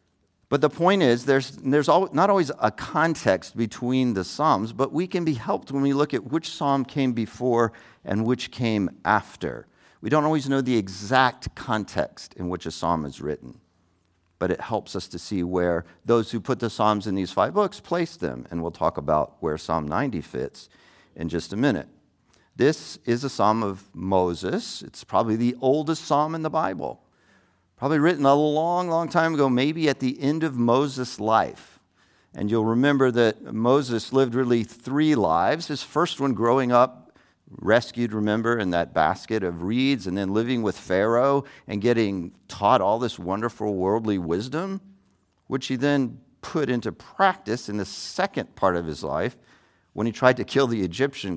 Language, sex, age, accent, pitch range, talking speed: English, male, 50-69, American, 95-140 Hz, 180 wpm